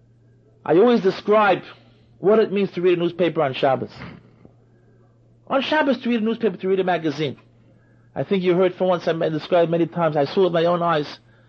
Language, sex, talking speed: English, male, 200 wpm